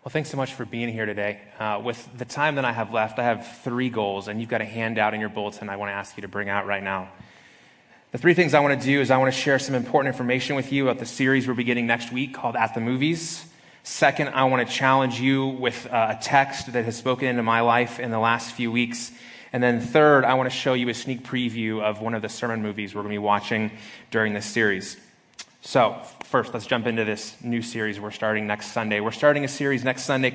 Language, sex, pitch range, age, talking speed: English, male, 110-130 Hz, 20-39, 260 wpm